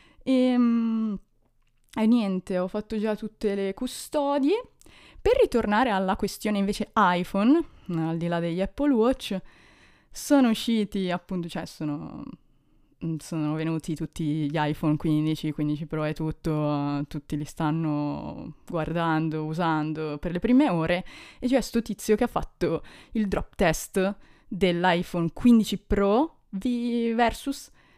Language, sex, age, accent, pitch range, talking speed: Italian, female, 20-39, native, 160-215 Hz, 125 wpm